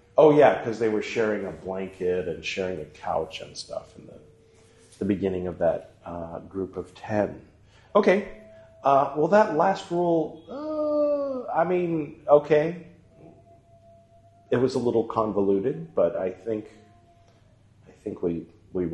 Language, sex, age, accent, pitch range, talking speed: English, male, 40-59, American, 95-140 Hz, 145 wpm